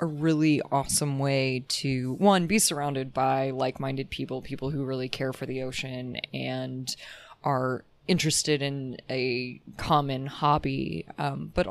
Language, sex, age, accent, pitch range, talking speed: English, female, 20-39, American, 135-155 Hz, 140 wpm